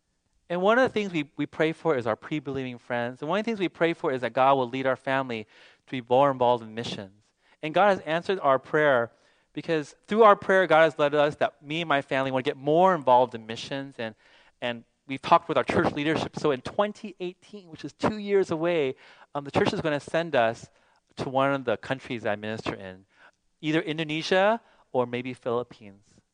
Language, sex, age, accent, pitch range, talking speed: English, male, 30-49, American, 125-185 Hz, 220 wpm